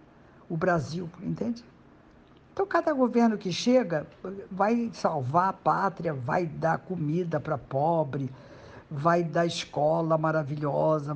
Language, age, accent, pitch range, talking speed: Portuguese, 50-69, Brazilian, 155-220 Hz, 115 wpm